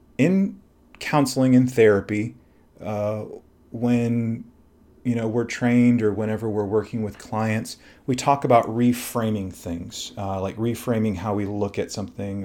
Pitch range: 100-125 Hz